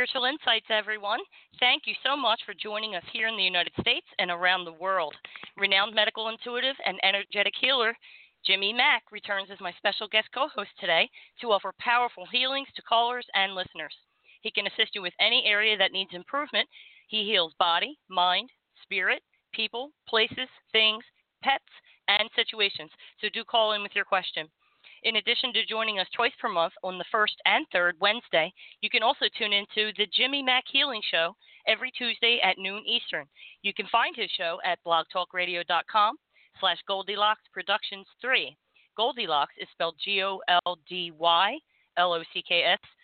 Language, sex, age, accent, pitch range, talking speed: English, female, 40-59, American, 180-225 Hz, 160 wpm